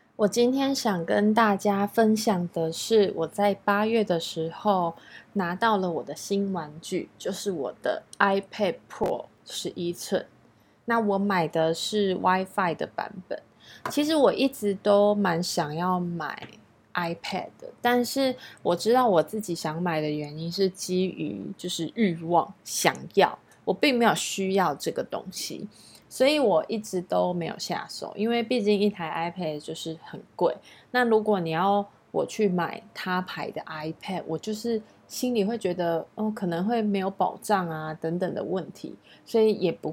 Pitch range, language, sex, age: 175-215 Hz, Chinese, female, 20-39